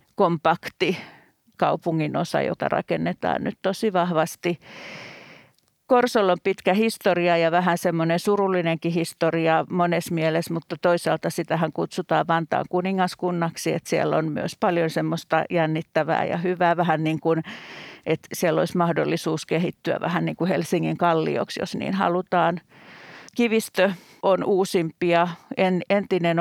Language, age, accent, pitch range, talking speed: Finnish, 50-69, native, 165-185 Hz, 125 wpm